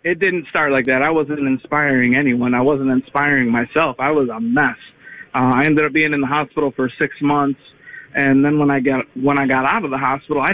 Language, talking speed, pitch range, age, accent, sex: English, 235 wpm, 135-155 Hz, 20-39, American, male